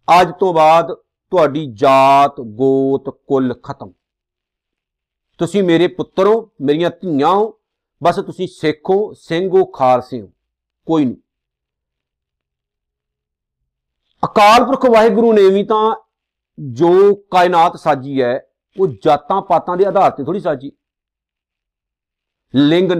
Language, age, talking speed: Punjabi, 50-69, 105 wpm